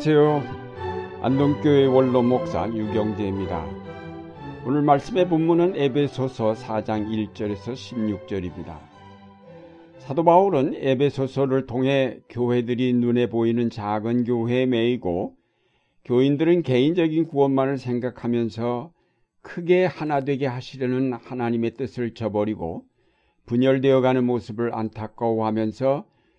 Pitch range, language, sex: 110-140 Hz, Korean, male